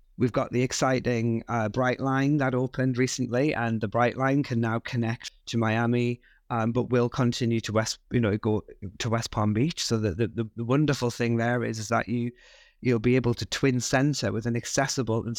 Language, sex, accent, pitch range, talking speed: English, male, British, 115-130 Hz, 205 wpm